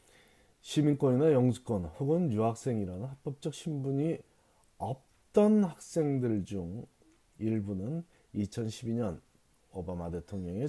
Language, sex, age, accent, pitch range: Korean, male, 40-59, native, 100-145 Hz